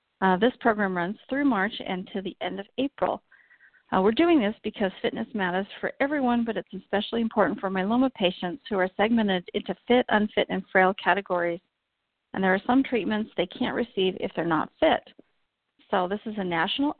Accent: American